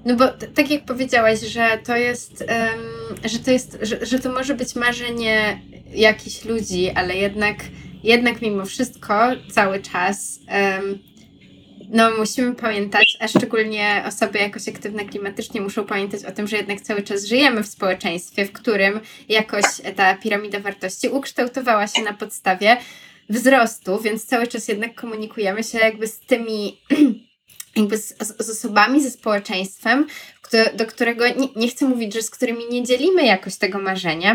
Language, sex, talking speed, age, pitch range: Polish, female, 155 wpm, 20-39, 210-250 Hz